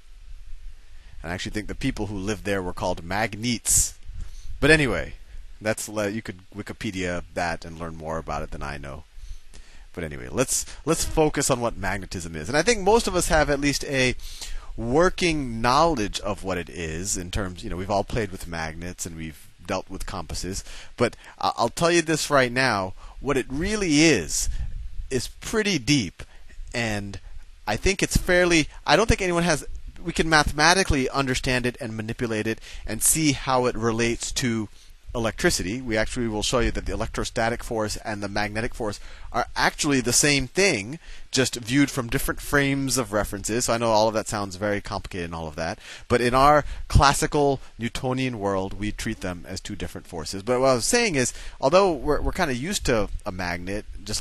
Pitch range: 90-130 Hz